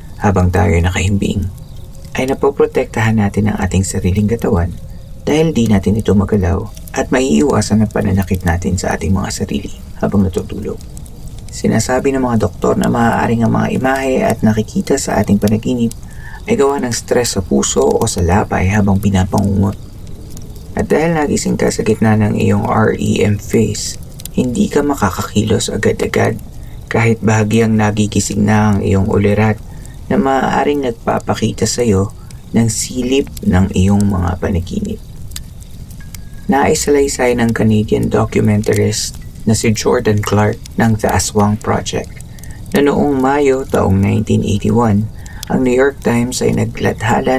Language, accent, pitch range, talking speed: Filipino, native, 100-115 Hz, 135 wpm